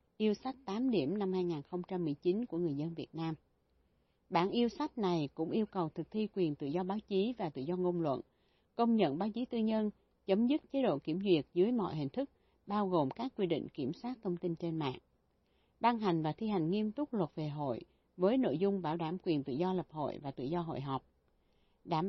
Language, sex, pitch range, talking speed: Vietnamese, female, 160-215 Hz, 225 wpm